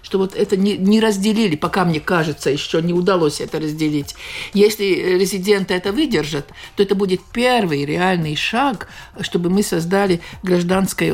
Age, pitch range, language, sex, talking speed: 60-79, 170-205 Hz, Russian, male, 150 wpm